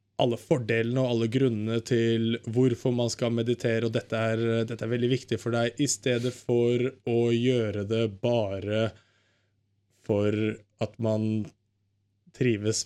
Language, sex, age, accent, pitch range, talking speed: Swedish, male, 20-39, Norwegian, 110-125 Hz, 130 wpm